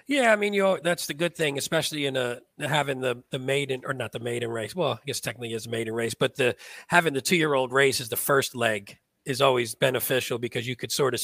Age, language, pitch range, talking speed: 40-59, English, 125-145 Hz, 250 wpm